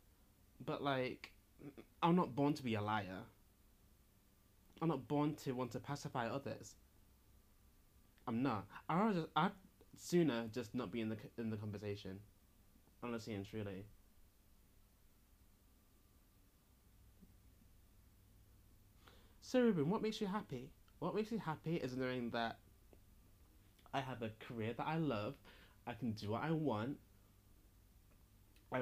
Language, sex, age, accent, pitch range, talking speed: English, male, 20-39, British, 100-145 Hz, 125 wpm